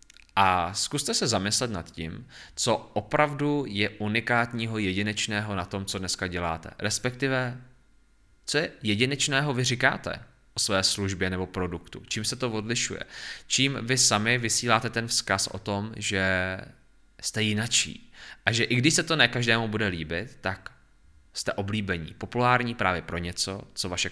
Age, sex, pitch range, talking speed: 20-39, male, 95-115 Hz, 150 wpm